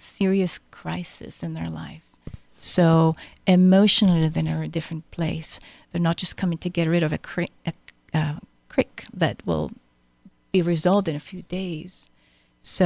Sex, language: female, English